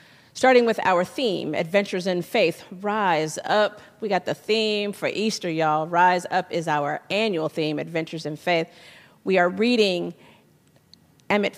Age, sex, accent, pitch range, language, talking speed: 40-59, female, American, 165-190 Hz, English, 150 wpm